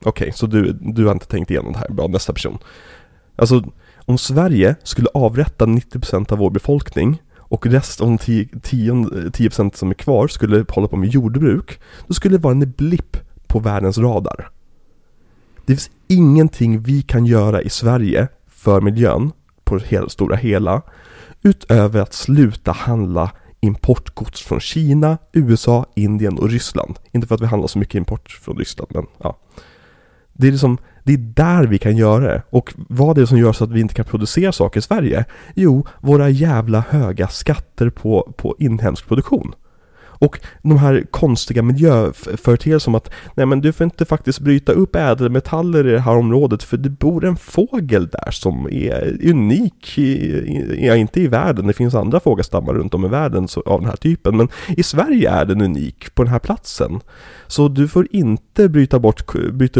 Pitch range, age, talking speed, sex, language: 105-140 Hz, 30-49, 180 wpm, male, Swedish